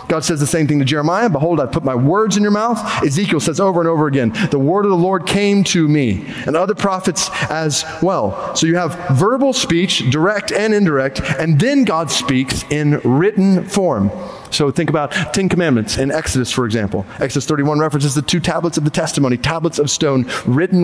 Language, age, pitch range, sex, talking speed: English, 30-49, 150-210 Hz, male, 205 wpm